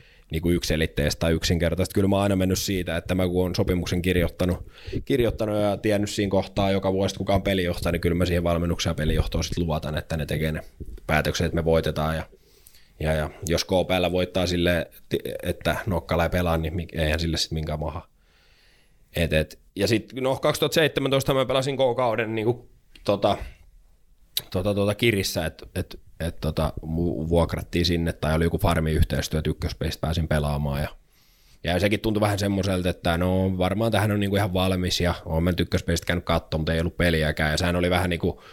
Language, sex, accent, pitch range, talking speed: Finnish, male, native, 80-95 Hz, 170 wpm